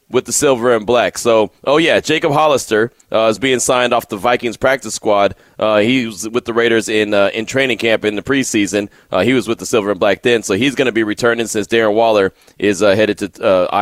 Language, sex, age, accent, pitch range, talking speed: English, male, 30-49, American, 105-130 Hz, 245 wpm